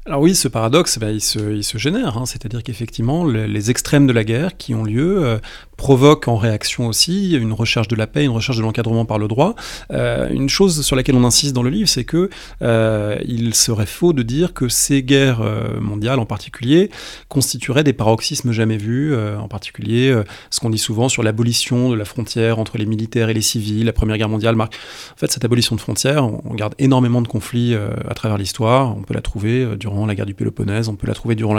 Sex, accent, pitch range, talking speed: male, French, 110-130 Hz, 225 wpm